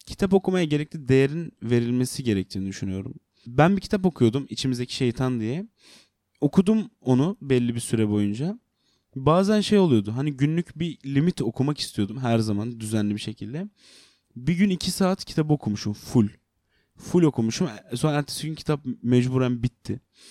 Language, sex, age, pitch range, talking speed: Turkish, male, 30-49, 110-150 Hz, 145 wpm